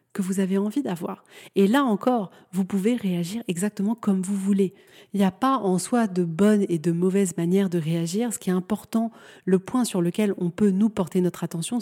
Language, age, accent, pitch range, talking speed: French, 30-49, French, 185-210 Hz, 220 wpm